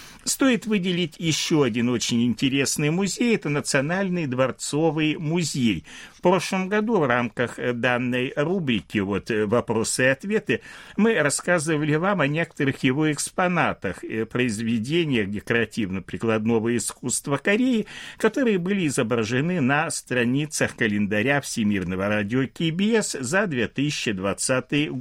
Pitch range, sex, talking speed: 115-175 Hz, male, 105 wpm